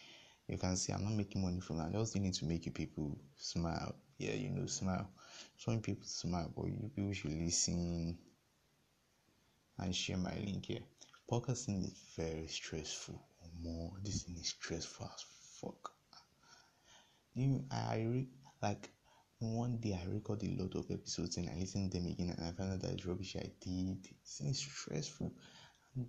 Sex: male